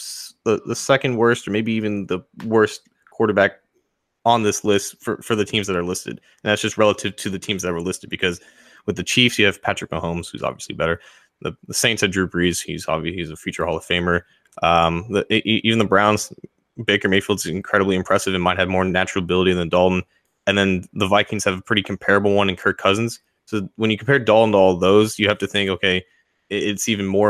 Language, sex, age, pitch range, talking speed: English, male, 20-39, 95-105 Hz, 220 wpm